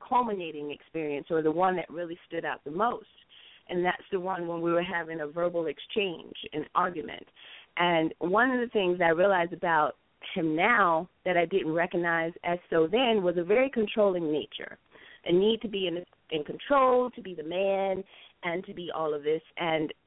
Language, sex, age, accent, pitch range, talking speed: English, female, 30-49, American, 170-215 Hz, 190 wpm